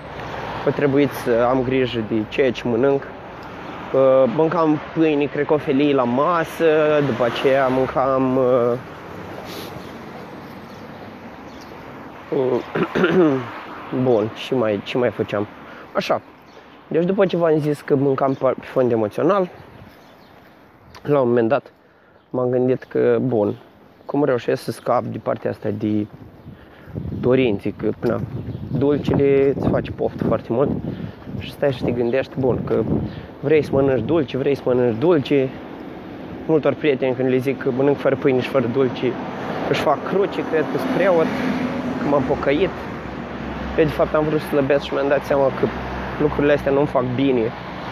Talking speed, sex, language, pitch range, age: 145 wpm, male, Romanian, 125-145 Hz, 20-39